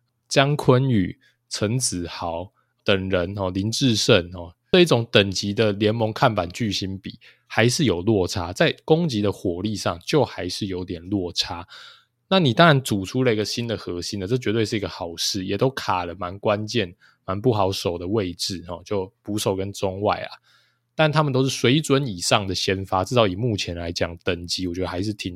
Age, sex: 20-39, male